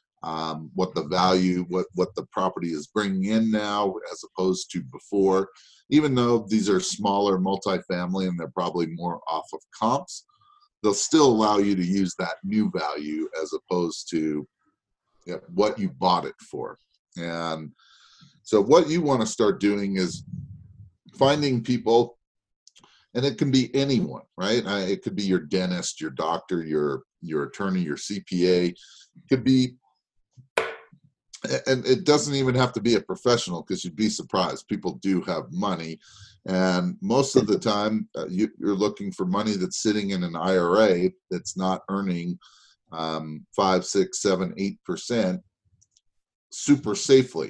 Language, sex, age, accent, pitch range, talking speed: English, male, 40-59, American, 90-120 Hz, 155 wpm